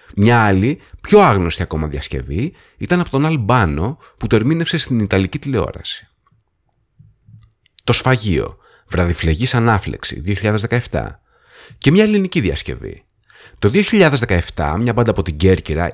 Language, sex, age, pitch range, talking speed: Greek, male, 30-49, 95-125 Hz, 115 wpm